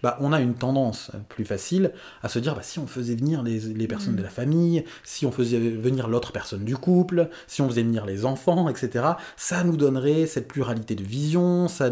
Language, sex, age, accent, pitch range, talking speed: French, male, 30-49, French, 115-150 Hz, 220 wpm